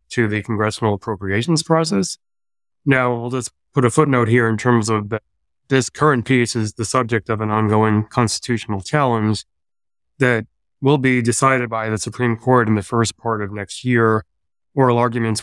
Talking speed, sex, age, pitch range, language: 170 wpm, male, 20-39, 110-125 Hz, English